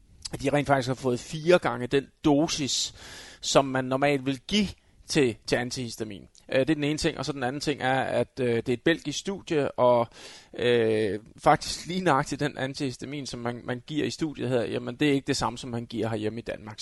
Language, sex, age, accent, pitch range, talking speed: Danish, male, 30-49, native, 120-155 Hz, 220 wpm